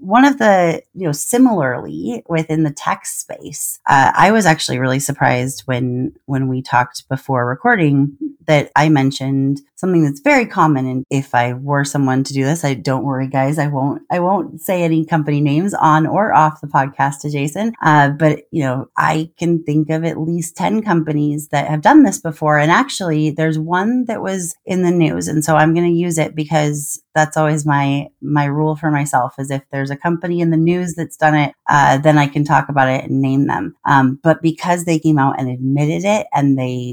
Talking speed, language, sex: 210 wpm, English, female